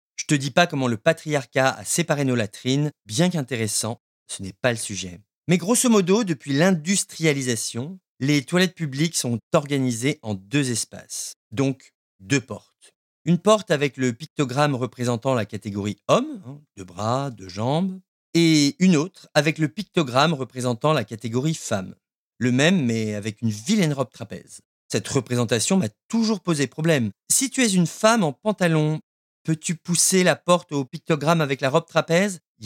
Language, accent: French, French